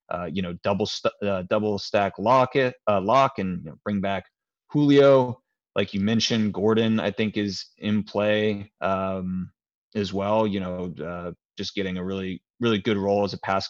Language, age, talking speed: English, 30-49, 190 wpm